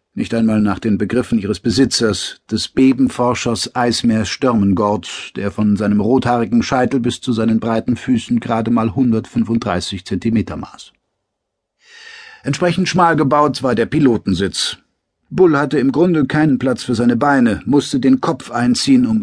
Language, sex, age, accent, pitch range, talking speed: German, male, 50-69, German, 110-135 Hz, 145 wpm